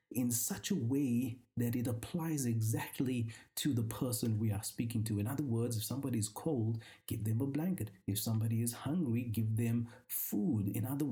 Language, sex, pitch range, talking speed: English, male, 115-145 Hz, 190 wpm